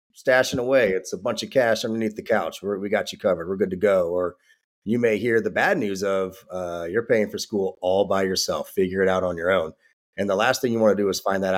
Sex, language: male, English